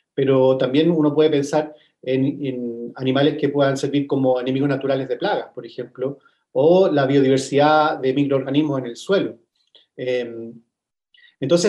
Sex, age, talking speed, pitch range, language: male, 40-59, 145 wpm, 140-175 Hz, Spanish